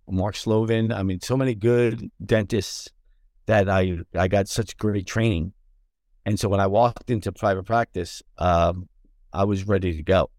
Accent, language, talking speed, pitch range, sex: American, English, 170 wpm, 90-110 Hz, male